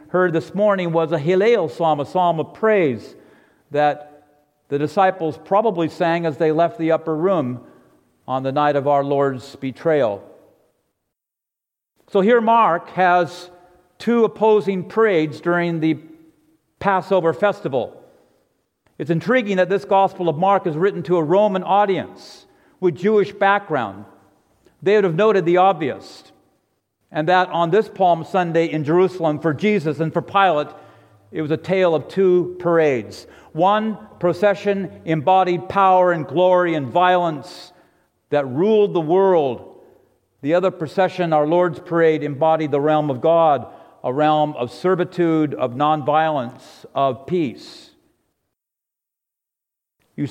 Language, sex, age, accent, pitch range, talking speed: English, male, 50-69, American, 155-190 Hz, 135 wpm